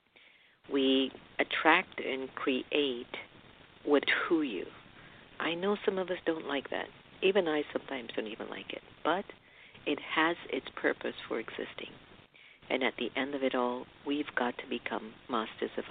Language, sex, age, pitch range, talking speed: English, female, 50-69, 115-155 Hz, 160 wpm